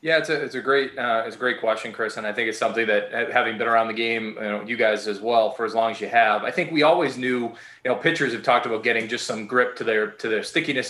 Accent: American